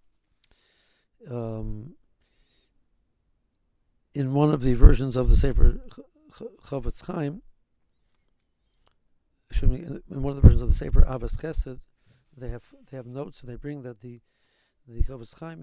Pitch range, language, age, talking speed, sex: 115-145 Hz, English, 60-79, 135 wpm, male